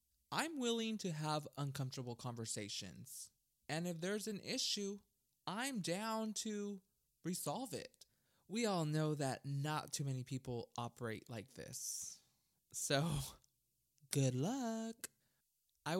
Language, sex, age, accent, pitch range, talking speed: English, male, 20-39, American, 130-190 Hz, 115 wpm